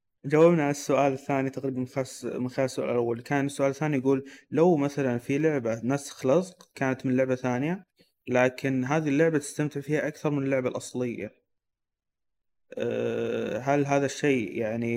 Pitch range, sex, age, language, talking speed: 115-140 Hz, male, 20-39, Arabic, 145 wpm